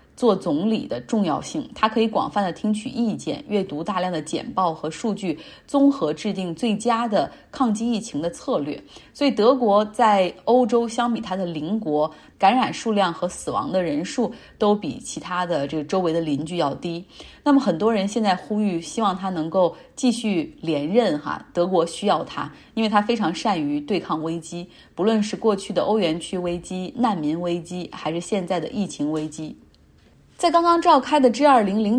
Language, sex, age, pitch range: Chinese, female, 20-39, 175-230 Hz